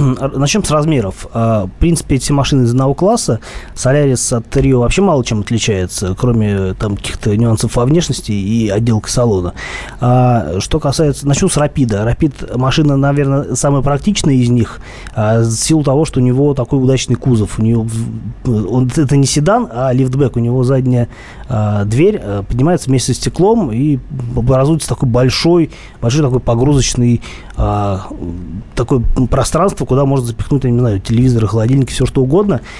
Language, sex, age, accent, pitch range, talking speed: Russian, male, 20-39, native, 115-140 Hz, 150 wpm